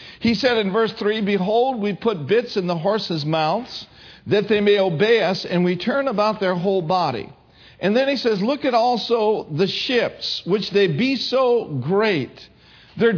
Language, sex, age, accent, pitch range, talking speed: English, male, 50-69, American, 175-230 Hz, 180 wpm